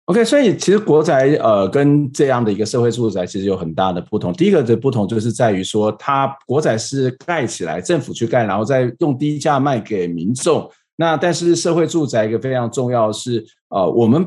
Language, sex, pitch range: Chinese, male, 120-160 Hz